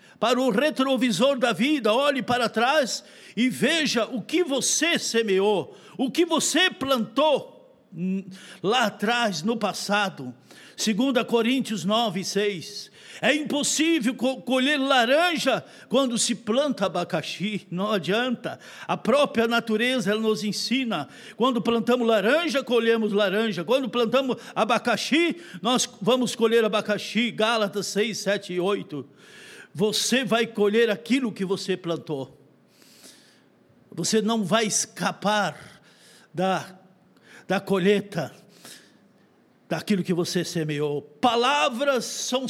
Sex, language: male, Portuguese